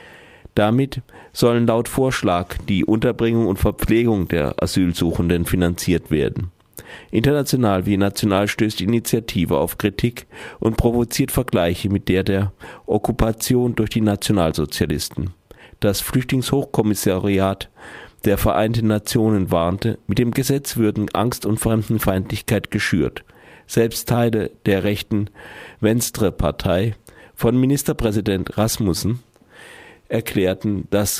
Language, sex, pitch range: German, male, 95-115 Hz